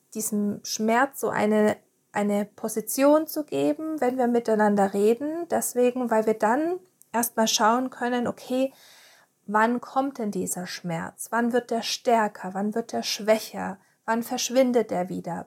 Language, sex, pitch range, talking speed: German, female, 210-250 Hz, 145 wpm